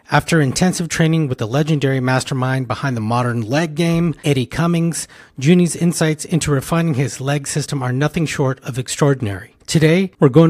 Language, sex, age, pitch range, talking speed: English, male, 40-59, 130-165 Hz, 165 wpm